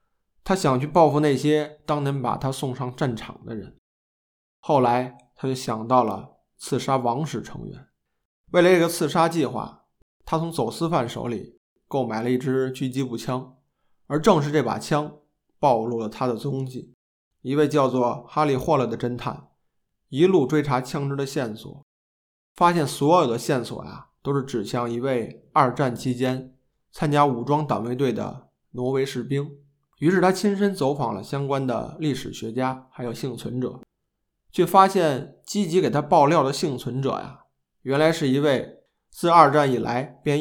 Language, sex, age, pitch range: Chinese, male, 20-39, 125-150 Hz